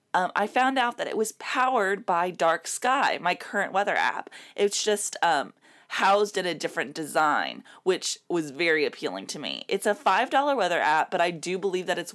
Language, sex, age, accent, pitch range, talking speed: English, female, 20-39, American, 175-235 Hz, 200 wpm